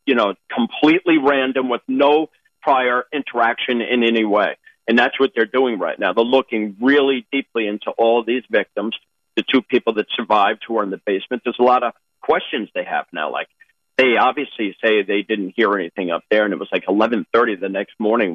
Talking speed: 205 wpm